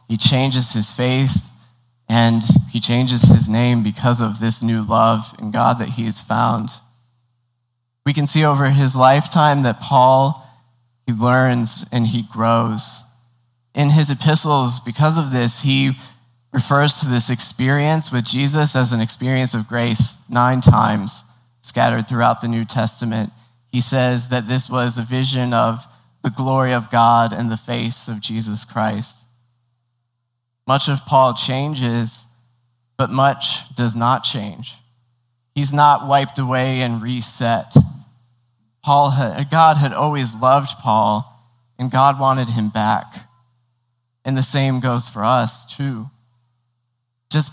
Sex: male